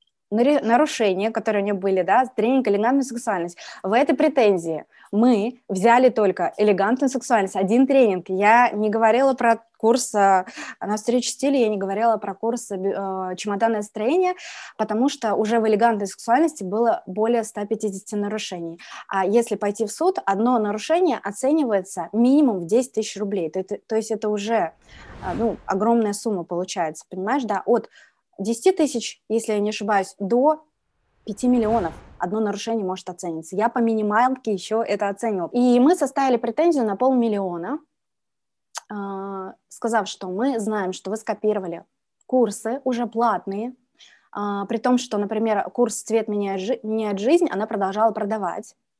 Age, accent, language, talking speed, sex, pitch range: 20-39, native, Russian, 140 wpm, female, 200-245 Hz